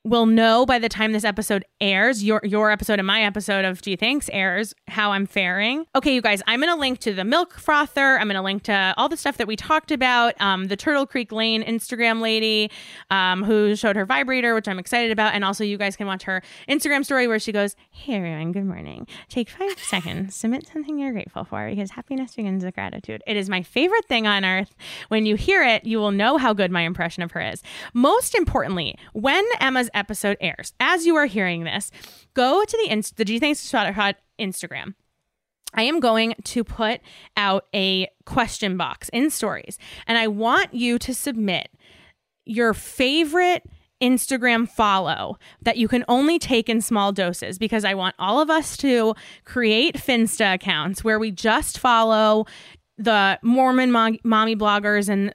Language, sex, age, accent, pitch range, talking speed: English, female, 20-39, American, 200-250 Hz, 190 wpm